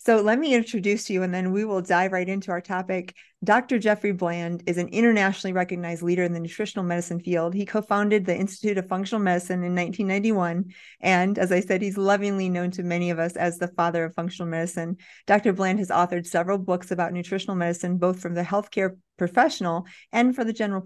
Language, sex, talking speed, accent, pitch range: English, female, 205 wpm, American, 175-195 Hz